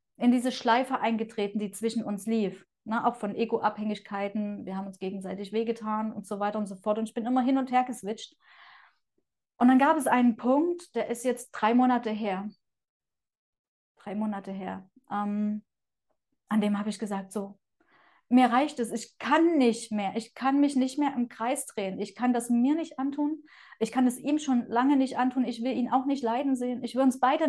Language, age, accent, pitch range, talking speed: German, 30-49, German, 210-255 Hz, 200 wpm